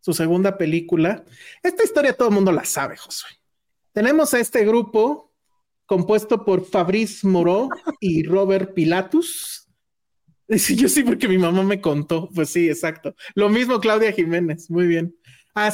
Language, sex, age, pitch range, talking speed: Spanish, male, 30-49, 170-220 Hz, 150 wpm